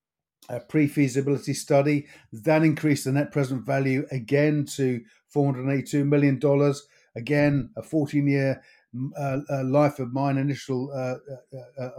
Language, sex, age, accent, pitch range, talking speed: English, male, 50-69, British, 130-145 Hz, 130 wpm